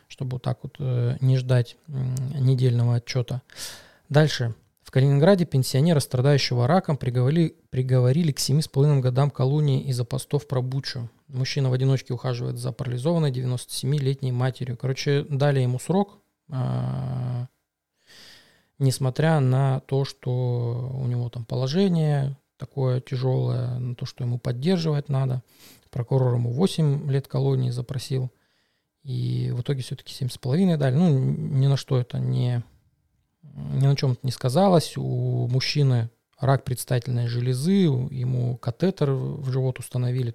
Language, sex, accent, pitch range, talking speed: Russian, male, native, 125-140 Hz, 130 wpm